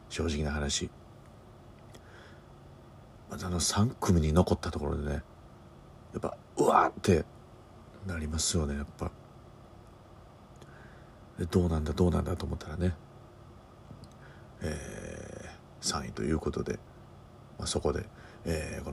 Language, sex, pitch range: Japanese, male, 75-90 Hz